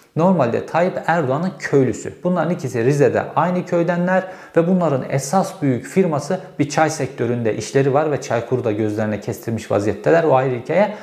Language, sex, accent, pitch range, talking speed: Turkish, male, native, 115-155 Hz, 145 wpm